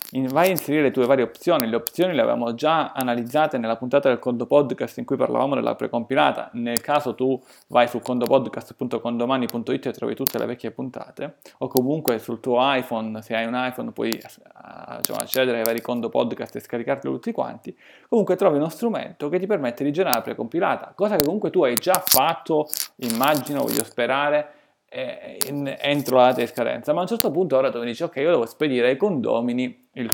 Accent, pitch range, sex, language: native, 120-155 Hz, male, Italian